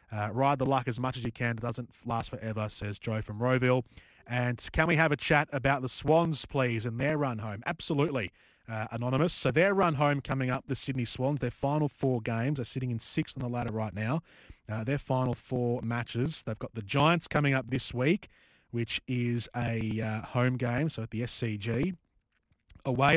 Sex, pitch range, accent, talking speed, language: male, 110-135 Hz, Australian, 205 wpm, English